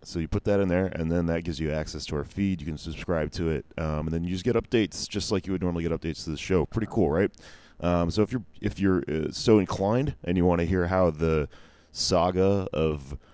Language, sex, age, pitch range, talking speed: English, male, 30-49, 75-95 Hz, 260 wpm